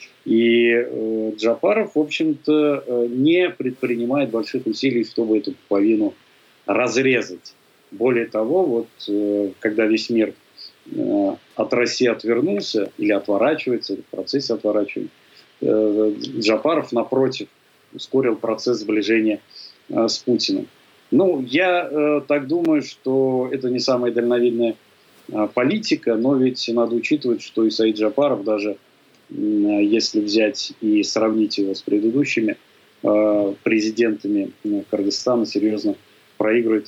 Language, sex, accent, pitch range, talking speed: Russian, male, native, 105-130 Hz, 110 wpm